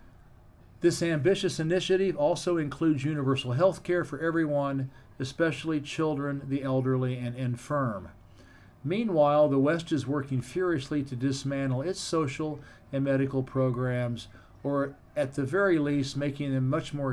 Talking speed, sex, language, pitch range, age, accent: 135 wpm, male, English, 125-155 Hz, 50-69, American